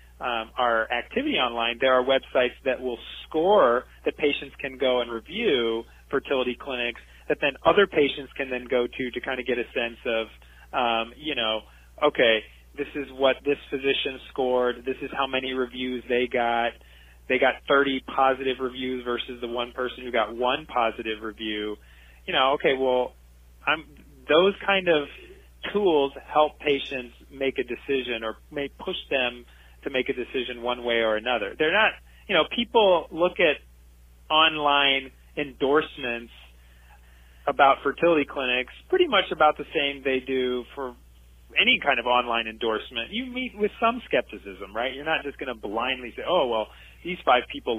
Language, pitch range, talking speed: English, 115-145 Hz, 165 wpm